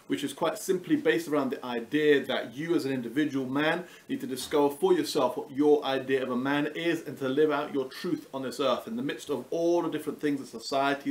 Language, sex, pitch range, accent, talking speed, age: English, male, 140-175 Hz, British, 245 wpm, 40-59